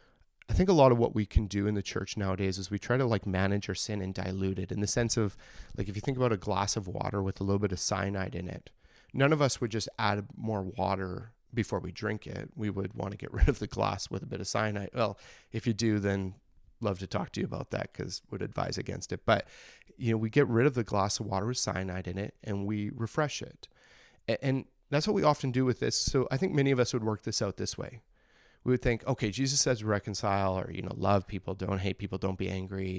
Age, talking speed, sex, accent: 30-49, 265 wpm, male, American